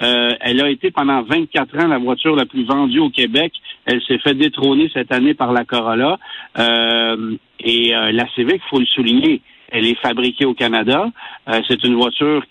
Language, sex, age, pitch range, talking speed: French, male, 60-79, 120-185 Hz, 195 wpm